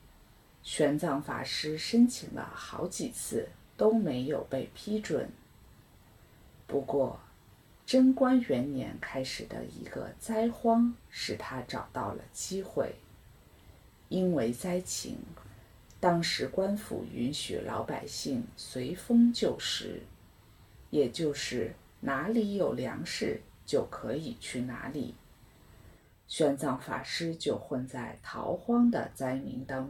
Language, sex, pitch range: English, female, 125-210 Hz